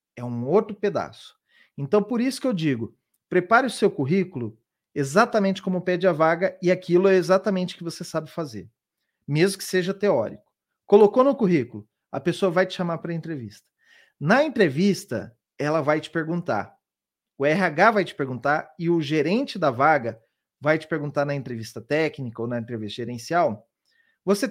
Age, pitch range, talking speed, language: 40-59, 135-195 Hz, 170 wpm, Portuguese